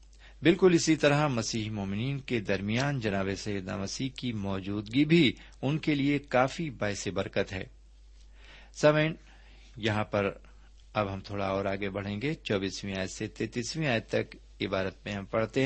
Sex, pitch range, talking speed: male, 100-135 Hz, 155 wpm